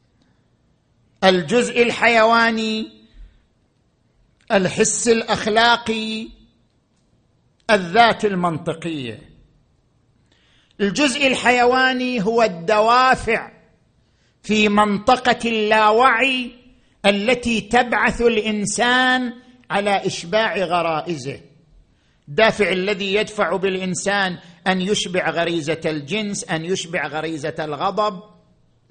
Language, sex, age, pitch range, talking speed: Arabic, male, 50-69, 175-245 Hz, 65 wpm